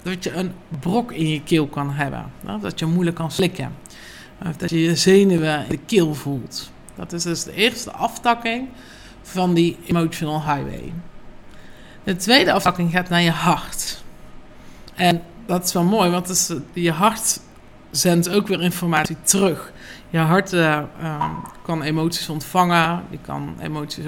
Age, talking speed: 50-69, 155 wpm